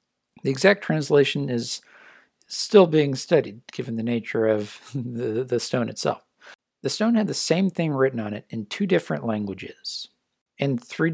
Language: English